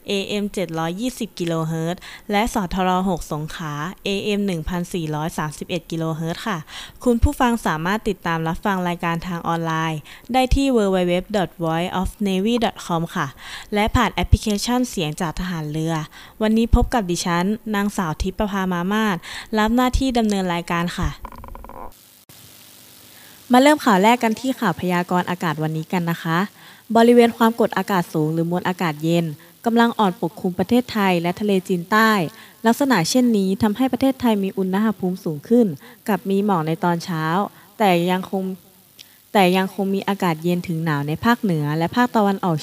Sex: female